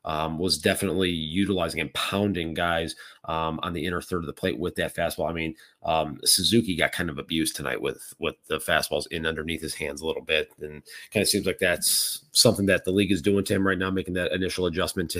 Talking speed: 235 wpm